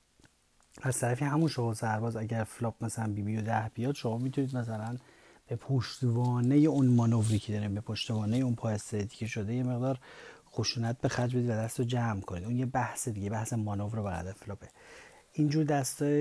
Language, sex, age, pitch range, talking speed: Persian, male, 30-49, 110-135 Hz, 180 wpm